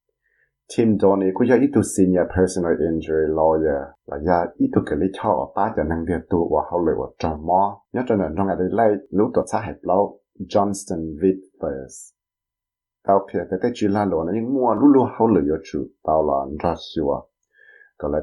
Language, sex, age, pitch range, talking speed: English, male, 50-69, 85-110 Hz, 35 wpm